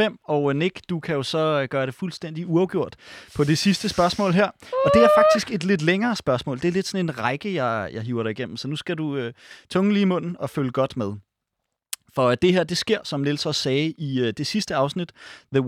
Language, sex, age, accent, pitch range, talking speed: Danish, male, 30-49, native, 125-175 Hz, 235 wpm